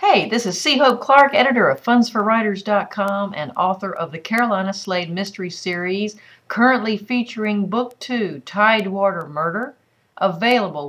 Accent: American